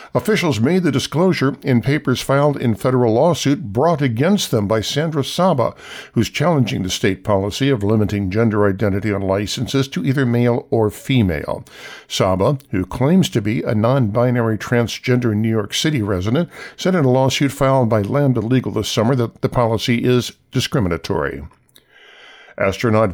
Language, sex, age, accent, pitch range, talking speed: English, male, 60-79, American, 110-140 Hz, 155 wpm